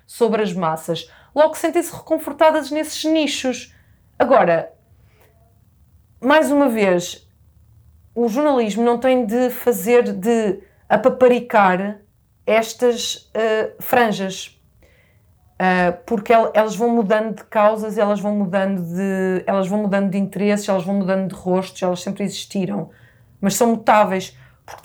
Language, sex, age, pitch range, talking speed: Portuguese, female, 30-49, 170-235 Hz, 125 wpm